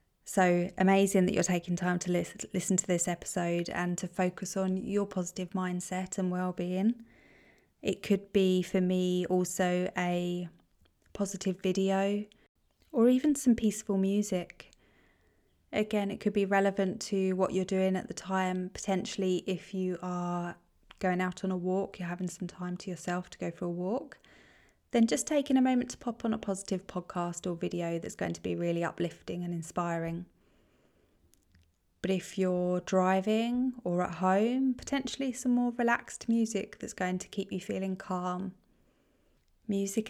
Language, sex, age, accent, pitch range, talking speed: English, female, 20-39, British, 175-200 Hz, 160 wpm